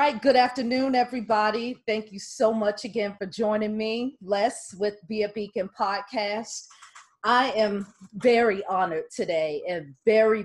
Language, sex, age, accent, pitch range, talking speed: English, female, 40-59, American, 195-240 Hz, 150 wpm